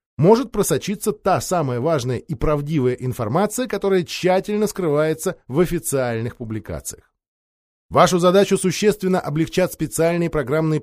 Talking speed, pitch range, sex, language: 110 wpm, 125-185 Hz, male, Russian